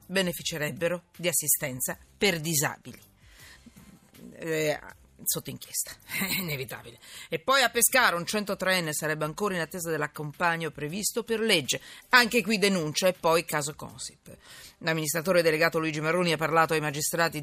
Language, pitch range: Italian, 160-220 Hz